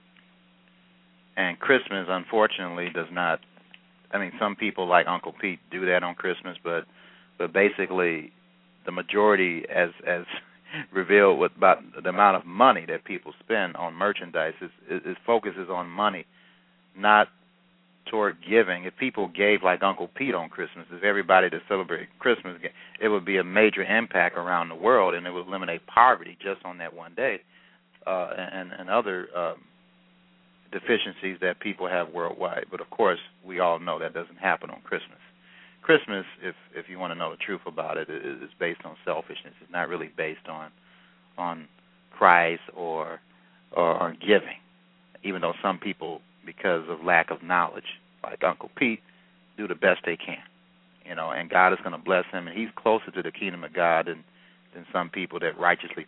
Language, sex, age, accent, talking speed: English, male, 40-59, American, 175 wpm